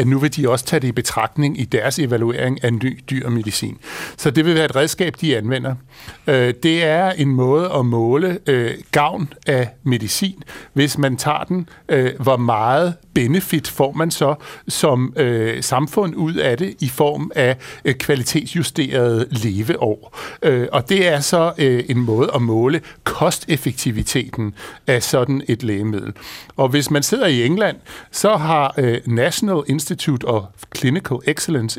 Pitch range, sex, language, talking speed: 125-155 Hz, male, Danish, 145 wpm